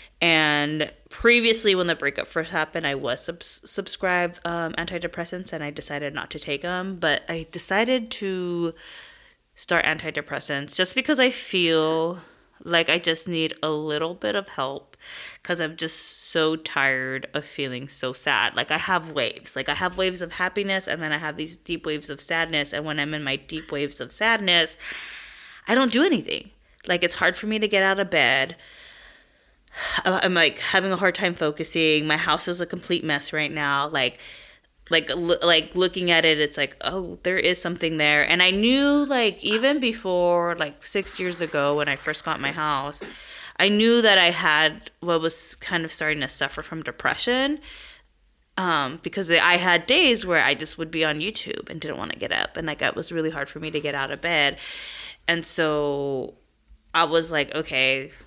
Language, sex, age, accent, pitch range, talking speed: English, female, 20-39, American, 150-180 Hz, 190 wpm